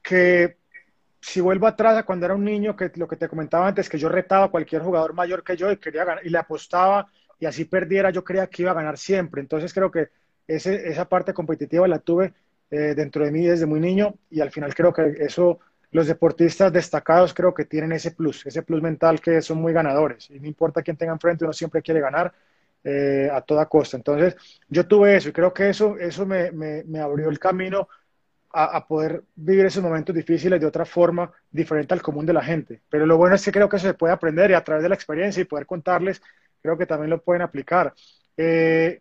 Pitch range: 155-185 Hz